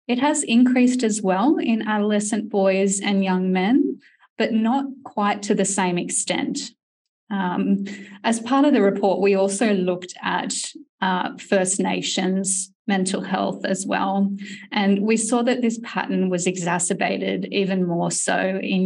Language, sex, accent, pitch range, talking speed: English, female, Australian, 190-235 Hz, 150 wpm